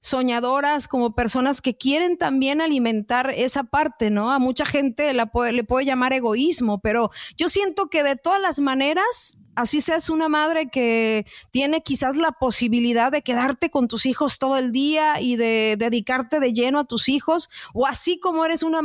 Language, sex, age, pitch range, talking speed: Spanish, female, 30-49, 245-310 Hz, 180 wpm